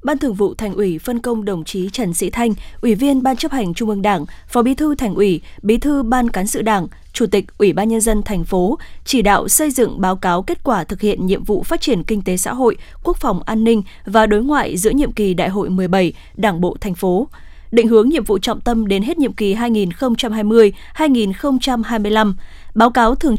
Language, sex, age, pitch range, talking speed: Vietnamese, female, 20-39, 200-245 Hz, 225 wpm